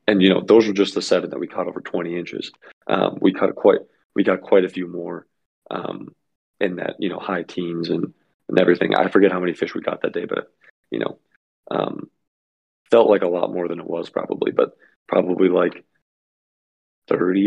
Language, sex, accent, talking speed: English, male, American, 205 wpm